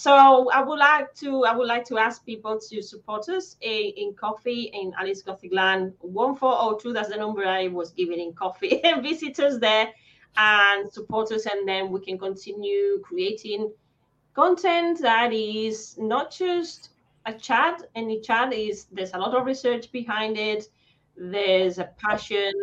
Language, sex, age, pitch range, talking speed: English, female, 30-49, 185-250 Hz, 165 wpm